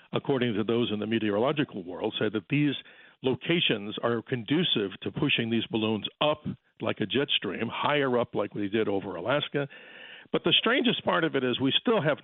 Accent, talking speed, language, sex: American, 190 wpm, English, male